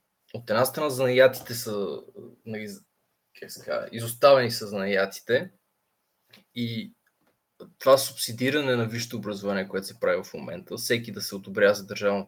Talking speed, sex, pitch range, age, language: 125 wpm, male, 100-125 Hz, 20-39, Bulgarian